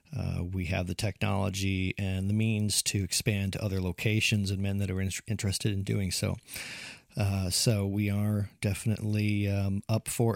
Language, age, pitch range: English, 40-59, 95-115 Hz